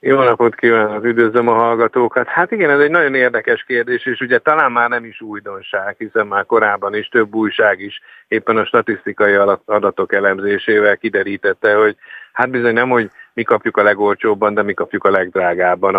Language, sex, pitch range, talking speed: Hungarian, male, 105-120 Hz, 175 wpm